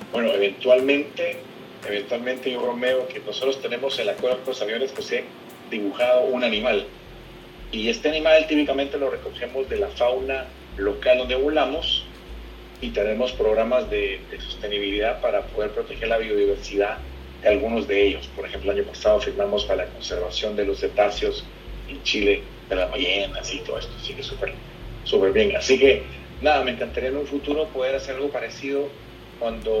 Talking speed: 170 wpm